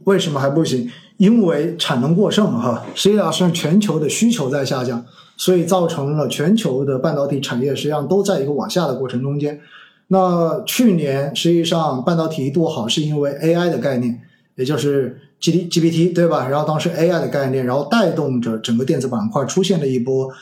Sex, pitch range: male, 135-180 Hz